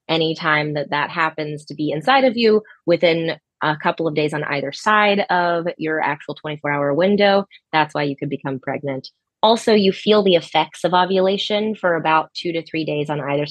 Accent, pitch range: American, 155-190 Hz